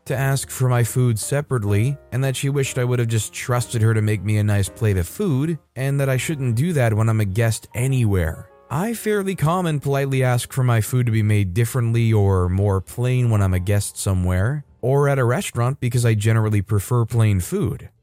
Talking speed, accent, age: 220 wpm, American, 20-39